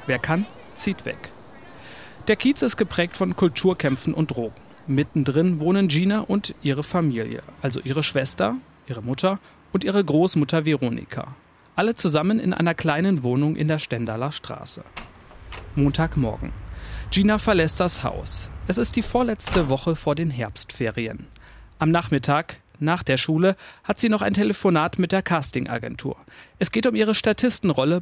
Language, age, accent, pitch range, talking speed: German, 40-59, German, 130-190 Hz, 145 wpm